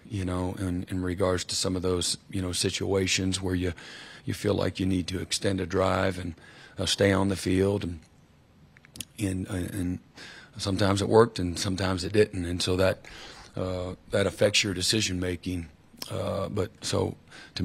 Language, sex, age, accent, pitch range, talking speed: English, male, 40-59, American, 90-100 Hz, 175 wpm